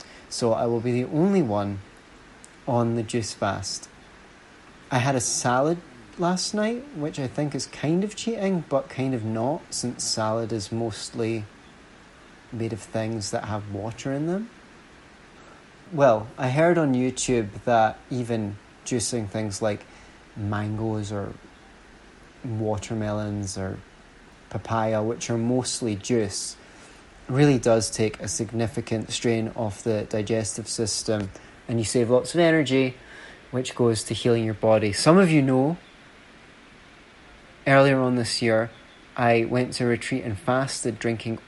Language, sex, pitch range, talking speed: English, male, 110-130 Hz, 140 wpm